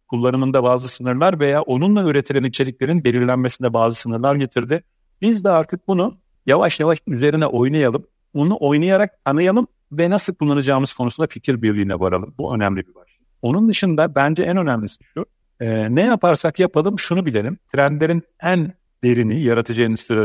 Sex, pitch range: male, 120-160 Hz